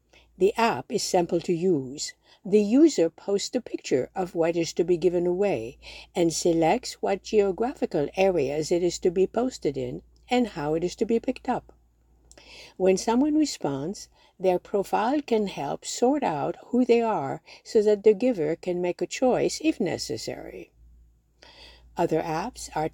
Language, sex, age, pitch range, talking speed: English, female, 60-79, 160-230 Hz, 160 wpm